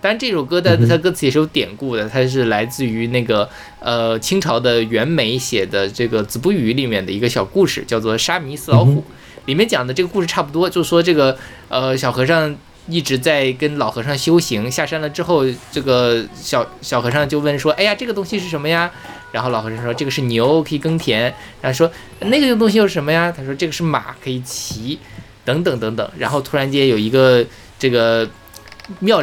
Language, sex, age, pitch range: Chinese, male, 20-39, 120-165 Hz